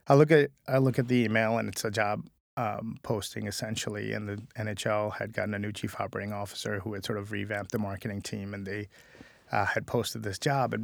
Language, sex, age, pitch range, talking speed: English, male, 20-39, 105-115 Hz, 225 wpm